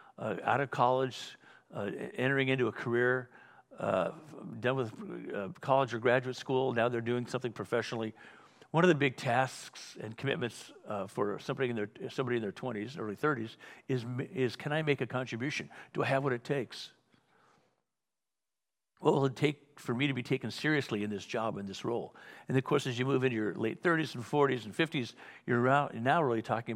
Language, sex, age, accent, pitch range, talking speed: English, male, 50-69, American, 115-140 Hz, 195 wpm